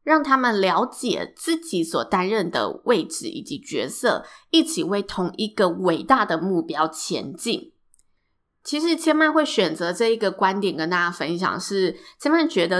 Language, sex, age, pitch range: Chinese, female, 20-39, 180-240 Hz